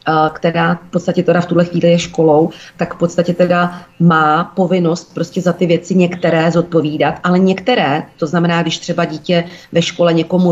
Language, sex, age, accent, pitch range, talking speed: Czech, female, 40-59, native, 160-180 Hz, 175 wpm